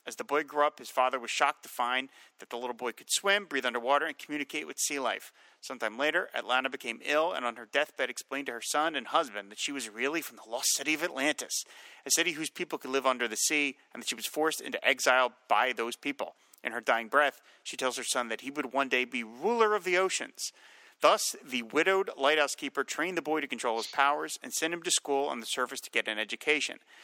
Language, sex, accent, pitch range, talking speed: English, male, American, 125-175 Hz, 245 wpm